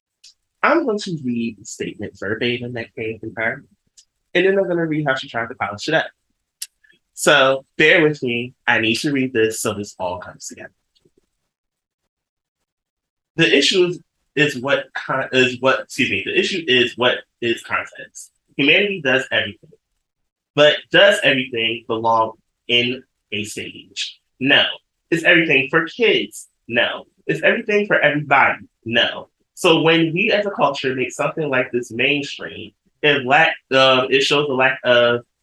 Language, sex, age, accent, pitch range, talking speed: English, male, 20-39, American, 115-145 Hz, 160 wpm